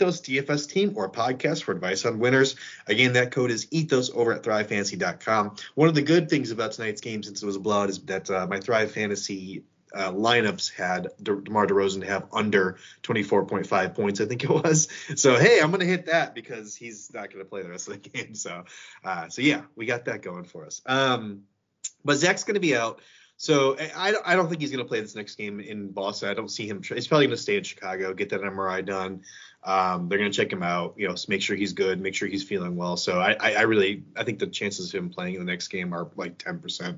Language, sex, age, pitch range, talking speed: English, male, 30-49, 95-130 Hz, 245 wpm